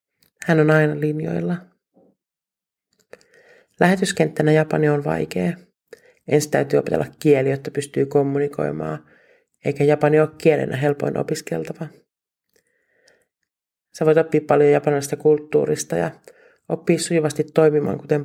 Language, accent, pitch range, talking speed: Finnish, native, 155-205 Hz, 105 wpm